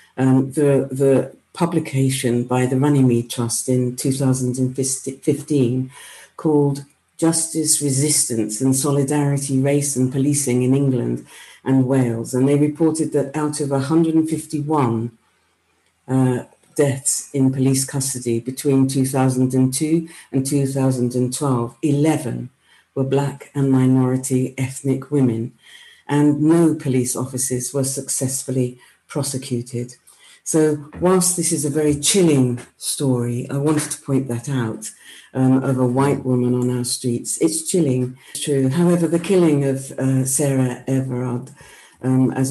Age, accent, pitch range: 50-69, British, 130-145 Hz